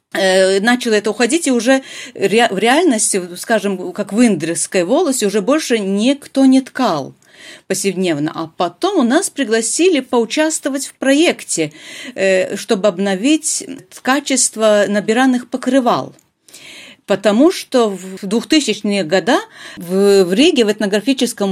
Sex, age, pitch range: female, 40-59, 185-260 Hz